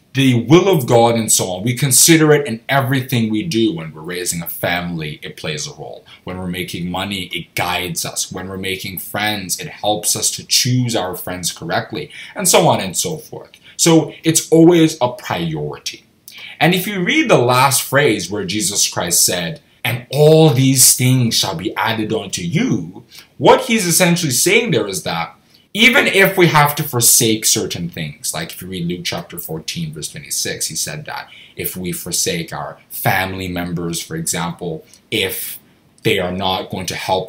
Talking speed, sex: 185 wpm, male